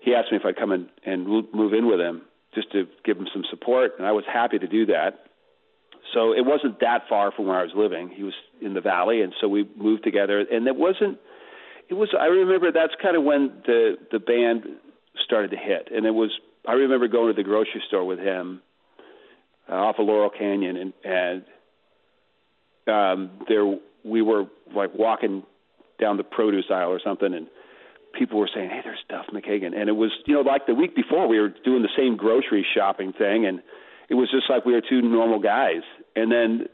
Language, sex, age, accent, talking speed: English, male, 40-59, American, 210 wpm